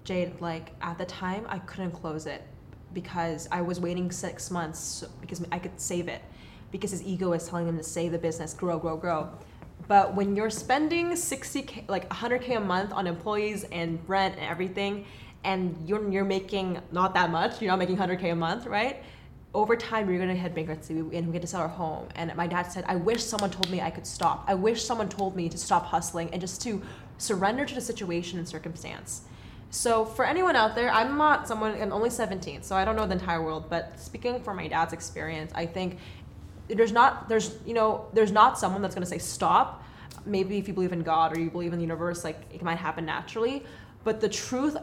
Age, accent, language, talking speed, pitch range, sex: 10-29, American, English, 210 wpm, 170-210 Hz, female